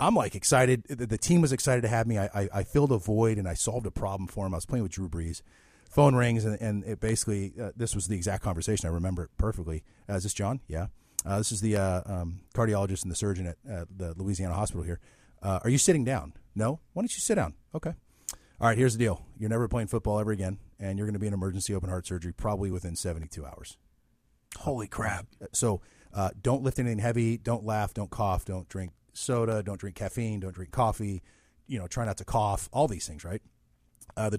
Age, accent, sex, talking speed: 40-59, American, male, 235 wpm